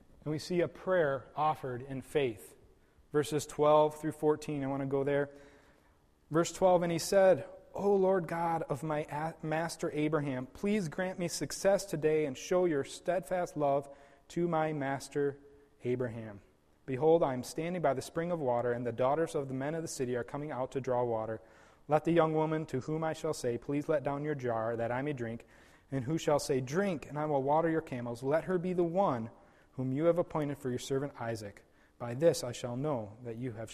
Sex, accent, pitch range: male, American, 120-160 Hz